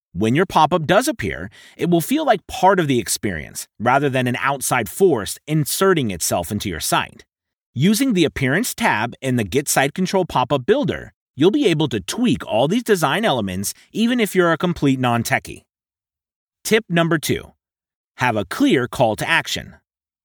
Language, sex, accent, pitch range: English, male, American, 120-175 Hz